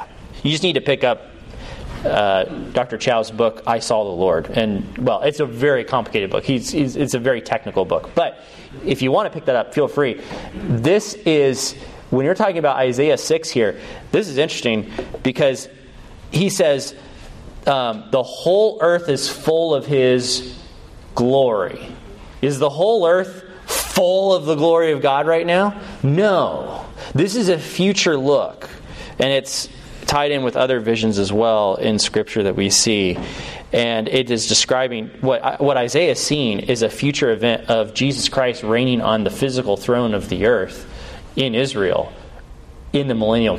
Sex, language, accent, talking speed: male, English, American, 170 wpm